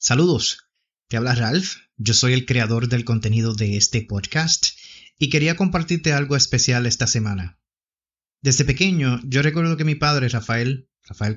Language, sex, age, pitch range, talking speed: English, male, 30-49, 115-150 Hz, 155 wpm